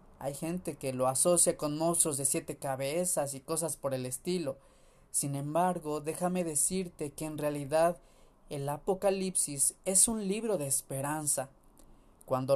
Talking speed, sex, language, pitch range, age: 145 wpm, male, Spanish, 140-180 Hz, 30-49